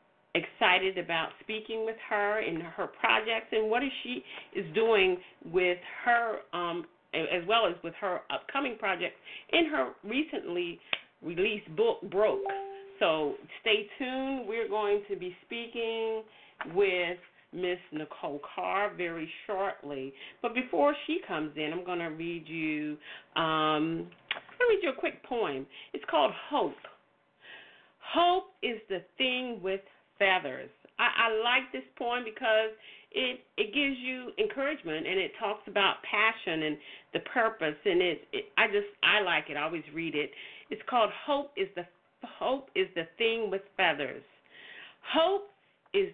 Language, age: English, 40-59